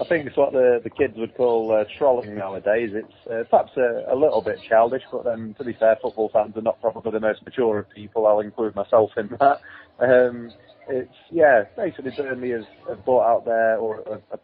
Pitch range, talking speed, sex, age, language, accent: 110-125 Hz, 215 wpm, male, 30-49, English, British